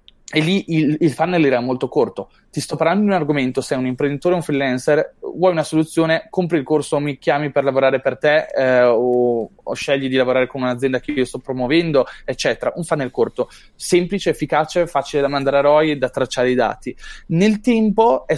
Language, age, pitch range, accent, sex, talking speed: Italian, 20-39, 130-170 Hz, native, male, 205 wpm